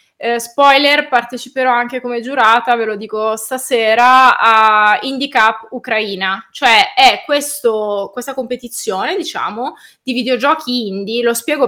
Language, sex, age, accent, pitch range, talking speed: Italian, female, 20-39, native, 195-265 Hz, 130 wpm